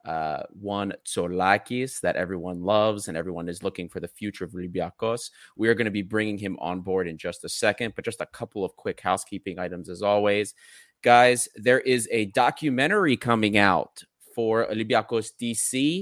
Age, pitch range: 30-49, 90-110 Hz